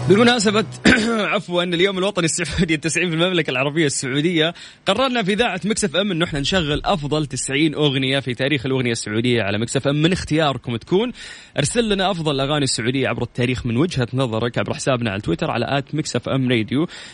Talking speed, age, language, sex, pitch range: 170 wpm, 20-39, Arabic, male, 115-170 Hz